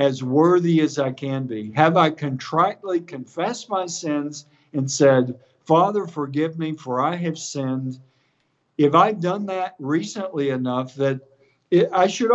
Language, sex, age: English, male, 50-69